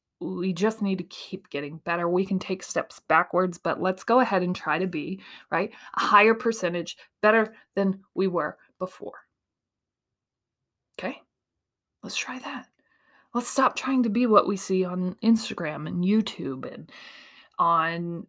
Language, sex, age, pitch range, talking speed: English, female, 20-39, 180-245 Hz, 155 wpm